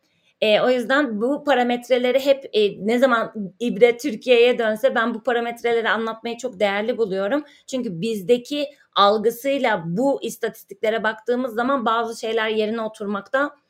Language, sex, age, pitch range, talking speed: Turkish, female, 30-49, 210-255 Hz, 130 wpm